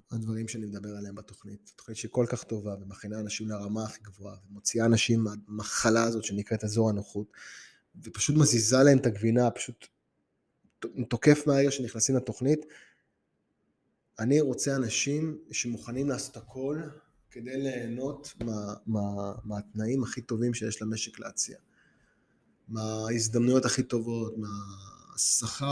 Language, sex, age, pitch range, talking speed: Hebrew, male, 20-39, 110-130 Hz, 120 wpm